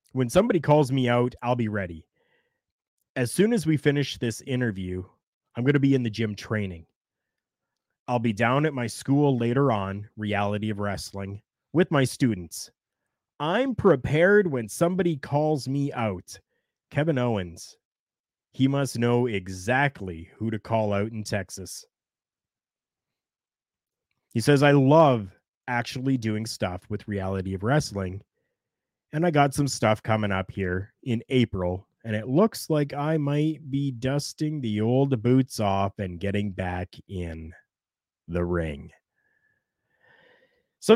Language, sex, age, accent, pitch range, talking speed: English, male, 30-49, American, 105-145 Hz, 140 wpm